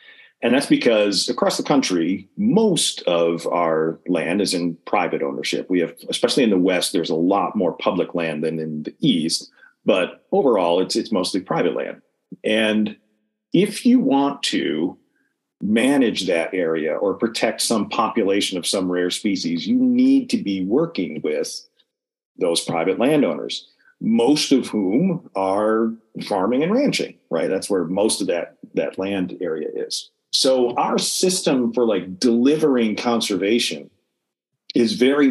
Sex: male